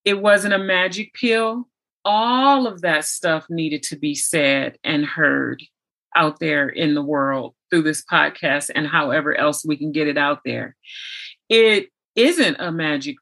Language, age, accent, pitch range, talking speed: English, 30-49, American, 150-185 Hz, 165 wpm